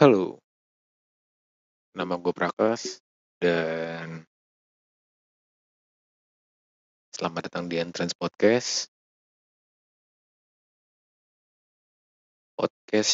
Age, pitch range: 40-59, 85-105 Hz